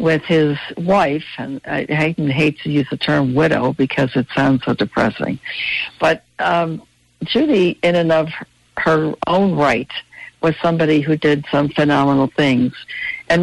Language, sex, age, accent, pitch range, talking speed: English, female, 60-79, American, 145-170 Hz, 145 wpm